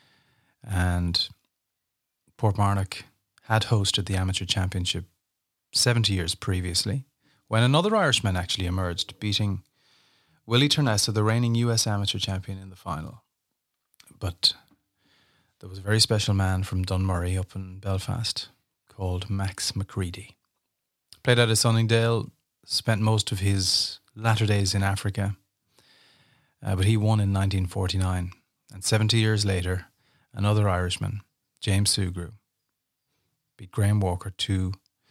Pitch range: 95-110 Hz